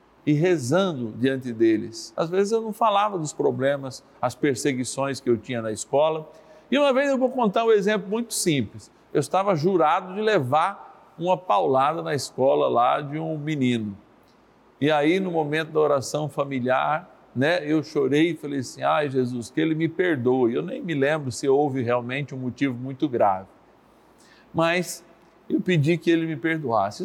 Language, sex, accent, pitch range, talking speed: Portuguese, male, Brazilian, 130-170 Hz, 175 wpm